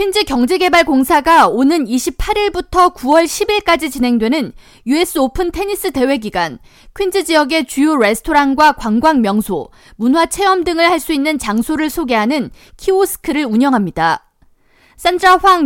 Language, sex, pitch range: Korean, female, 255-345 Hz